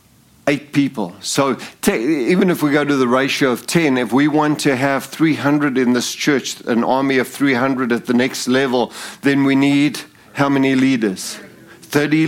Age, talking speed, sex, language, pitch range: 50-69, 170 wpm, male, English, 120-145 Hz